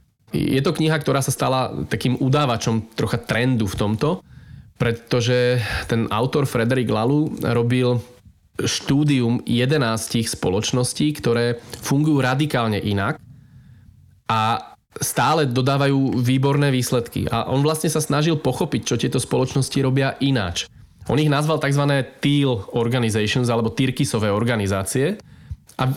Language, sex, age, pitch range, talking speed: Slovak, male, 20-39, 115-145 Hz, 120 wpm